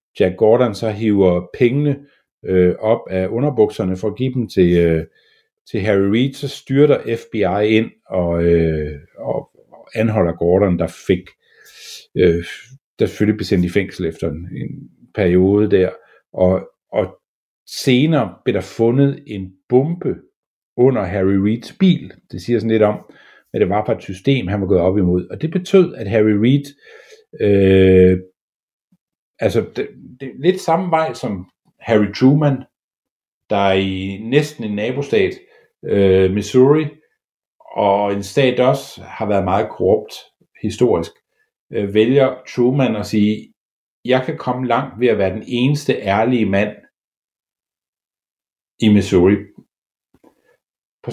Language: Danish